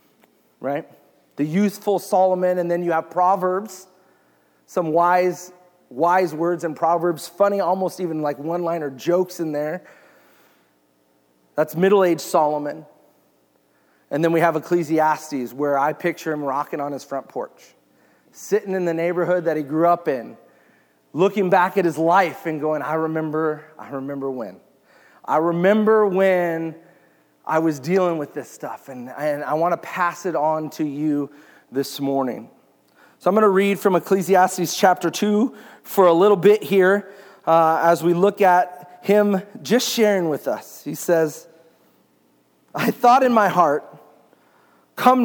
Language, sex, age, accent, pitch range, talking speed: English, male, 40-59, American, 150-190 Hz, 150 wpm